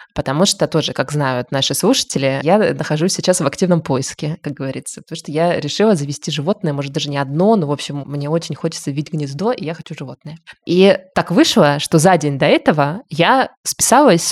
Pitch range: 145-180 Hz